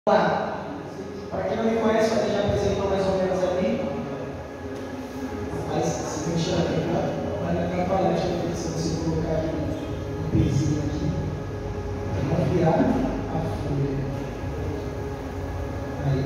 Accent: Brazilian